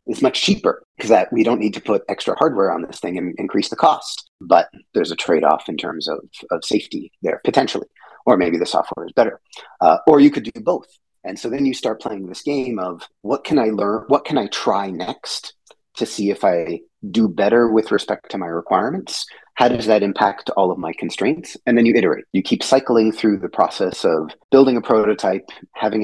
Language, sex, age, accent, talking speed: English, male, 30-49, American, 215 wpm